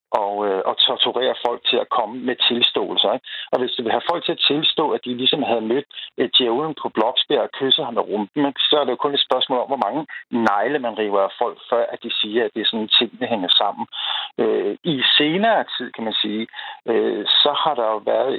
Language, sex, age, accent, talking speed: Danish, male, 50-69, native, 235 wpm